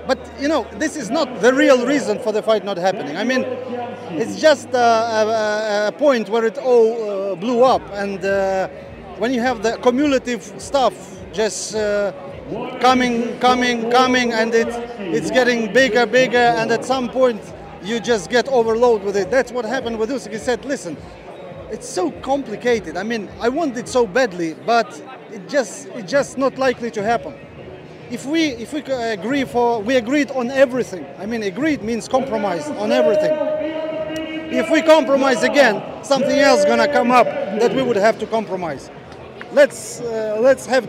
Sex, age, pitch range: male, 40-59, 220-265 Hz